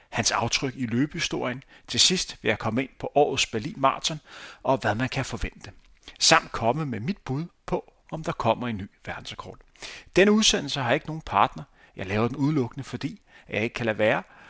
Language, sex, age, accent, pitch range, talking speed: Danish, male, 40-59, native, 115-145 Hz, 195 wpm